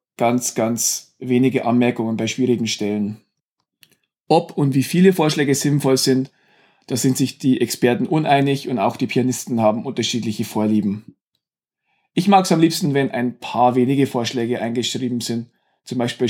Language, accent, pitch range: German, German, 120-145 Hz